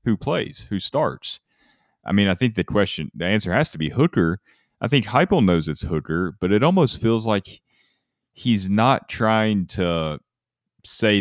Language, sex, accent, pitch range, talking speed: English, male, American, 80-100 Hz, 170 wpm